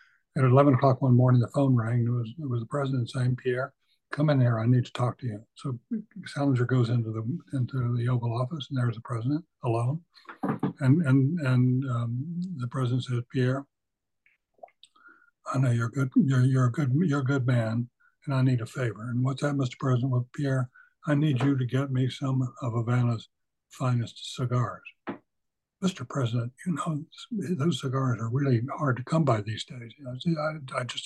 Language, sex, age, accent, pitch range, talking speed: English, male, 60-79, American, 120-140 Hz, 190 wpm